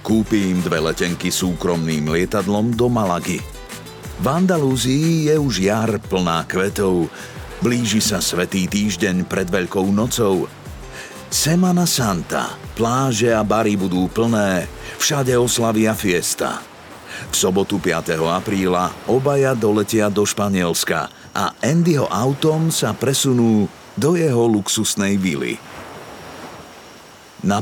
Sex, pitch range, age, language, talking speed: male, 95-130 Hz, 50-69, Slovak, 105 wpm